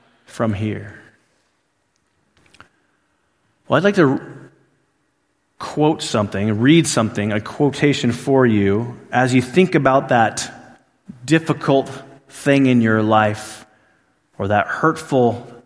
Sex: male